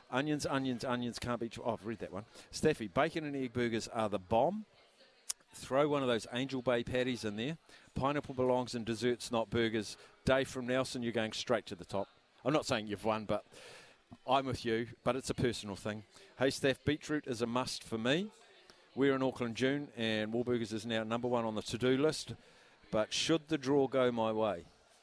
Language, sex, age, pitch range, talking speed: English, male, 50-69, 105-130 Hz, 205 wpm